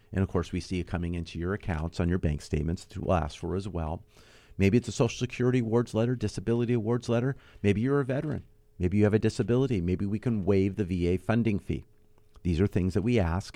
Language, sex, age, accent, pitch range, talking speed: English, male, 50-69, American, 100-130 Hz, 235 wpm